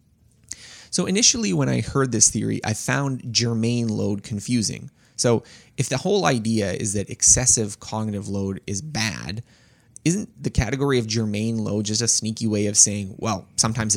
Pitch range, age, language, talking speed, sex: 105-130 Hz, 20-39, English, 165 wpm, male